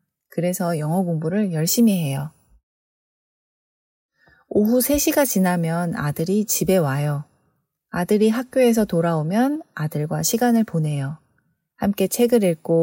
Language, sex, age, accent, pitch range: Korean, female, 30-49, native, 155-215 Hz